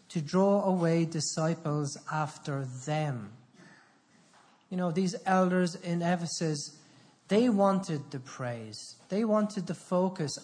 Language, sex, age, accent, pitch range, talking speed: English, male, 40-59, Irish, 145-185 Hz, 115 wpm